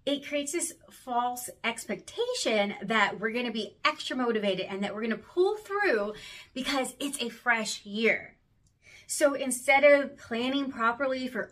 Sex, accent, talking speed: female, American, 145 wpm